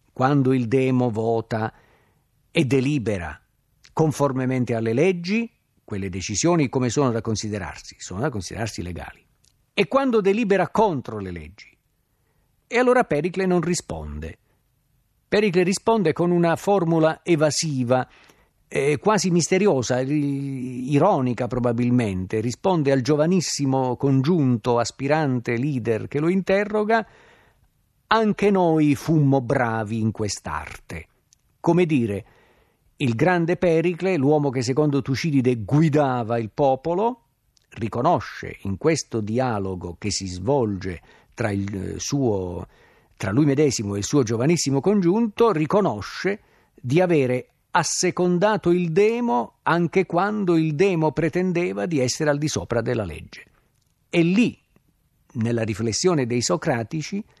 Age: 50-69